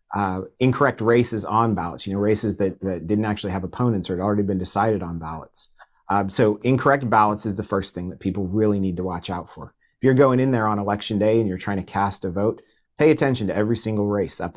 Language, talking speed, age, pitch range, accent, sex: English, 245 wpm, 30-49, 100-115 Hz, American, male